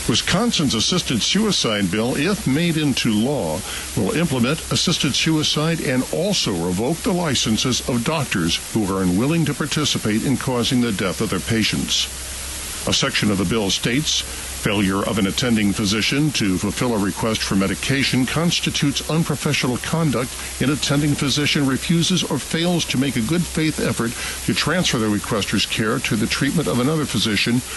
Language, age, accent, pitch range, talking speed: English, 60-79, American, 100-145 Hz, 160 wpm